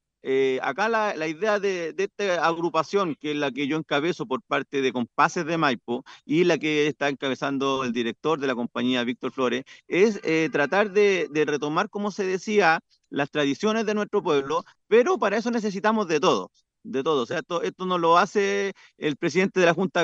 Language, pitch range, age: Spanish, 140-200 Hz, 40-59